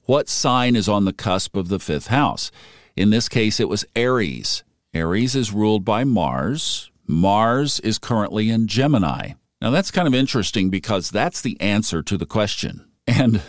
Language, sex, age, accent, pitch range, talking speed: English, male, 50-69, American, 95-125 Hz, 175 wpm